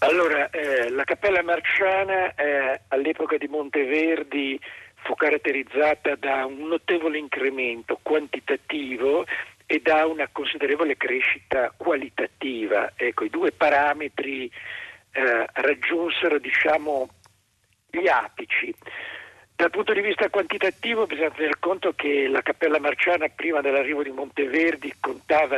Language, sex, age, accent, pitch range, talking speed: Italian, male, 50-69, native, 140-205 Hz, 115 wpm